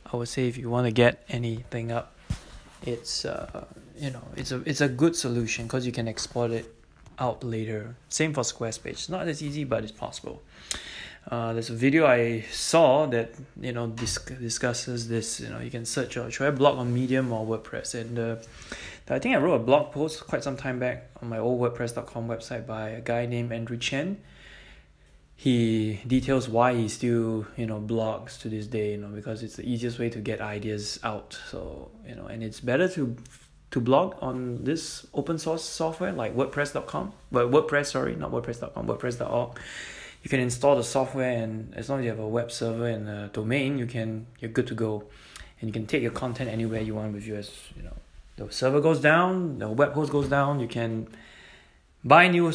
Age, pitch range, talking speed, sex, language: 20-39, 110-135 Hz, 205 wpm, male, English